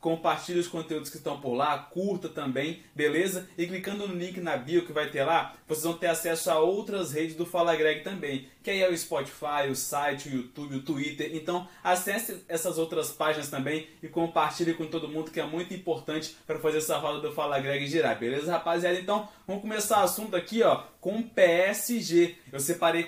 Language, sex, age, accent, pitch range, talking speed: Portuguese, male, 20-39, Brazilian, 155-180 Hz, 205 wpm